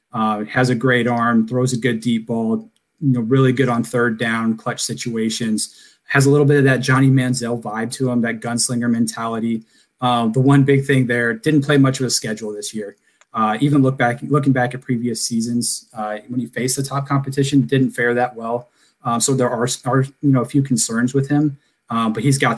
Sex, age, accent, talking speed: male, 20-39, American, 220 wpm